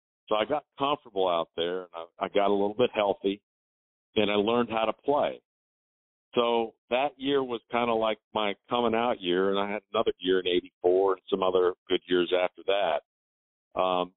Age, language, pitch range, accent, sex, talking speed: 50-69, English, 100-125 Hz, American, male, 195 wpm